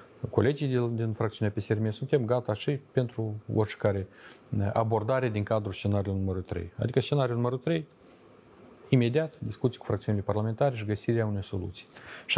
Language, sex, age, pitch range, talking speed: Romanian, male, 40-59, 100-130 Hz, 145 wpm